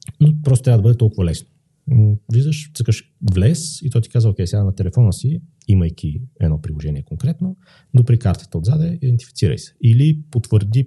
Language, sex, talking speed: Bulgarian, male, 165 wpm